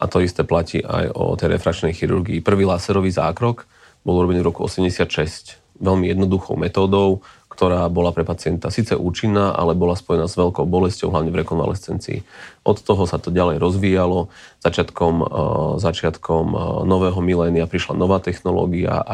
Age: 30-49